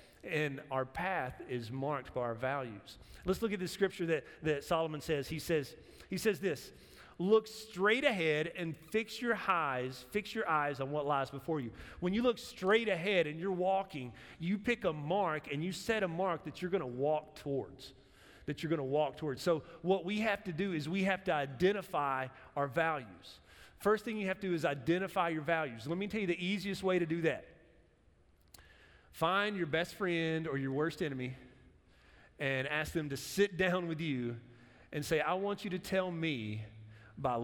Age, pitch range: 30-49, 135-180 Hz